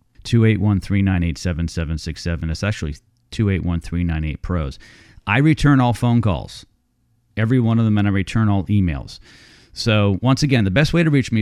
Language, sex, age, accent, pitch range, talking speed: English, male, 40-59, American, 90-120 Hz, 175 wpm